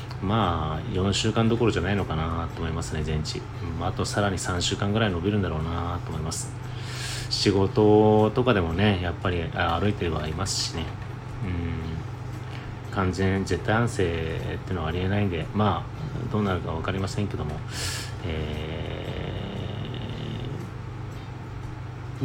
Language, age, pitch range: Japanese, 30-49, 95-125 Hz